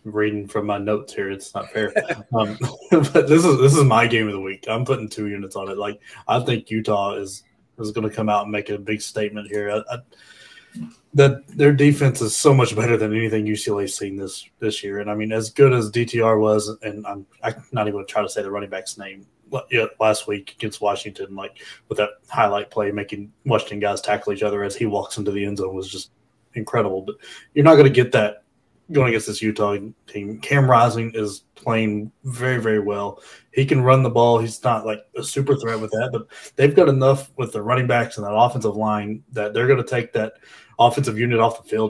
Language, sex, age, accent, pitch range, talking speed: English, male, 20-39, American, 105-120 Hz, 230 wpm